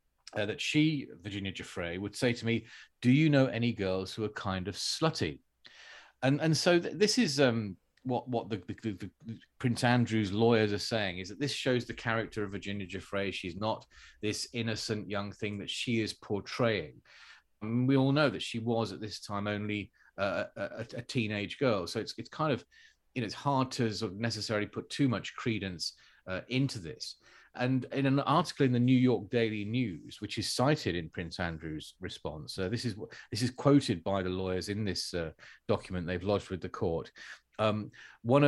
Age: 30-49